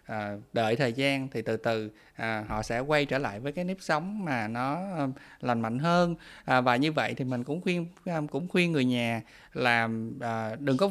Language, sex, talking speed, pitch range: Vietnamese, male, 185 wpm, 120-155 Hz